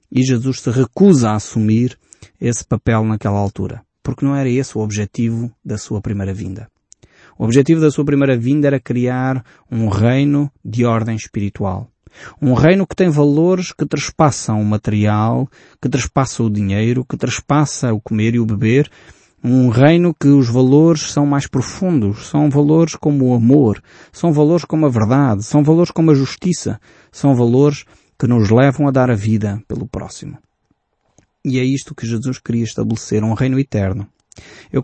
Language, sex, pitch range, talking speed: Portuguese, male, 110-145 Hz, 170 wpm